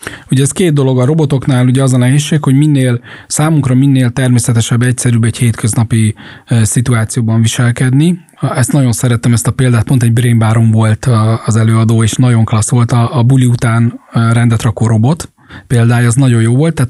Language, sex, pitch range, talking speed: Hungarian, male, 120-140 Hz, 180 wpm